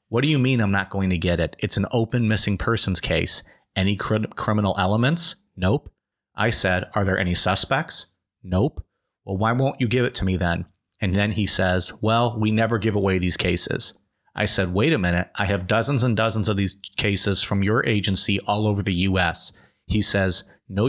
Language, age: English, 30-49